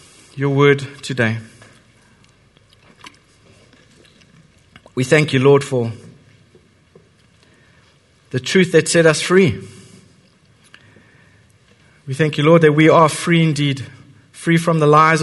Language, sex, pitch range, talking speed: English, male, 145-180 Hz, 105 wpm